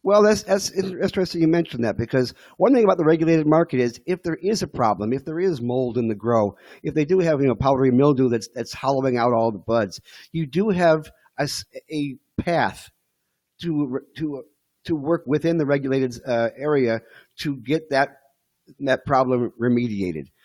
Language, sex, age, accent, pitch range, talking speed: English, male, 50-69, American, 120-150 Hz, 190 wpm